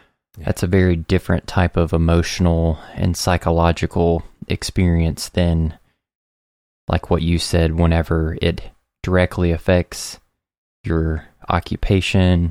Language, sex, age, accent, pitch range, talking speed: English, male, 20-39, American, 85-95 Hz, 100 wpm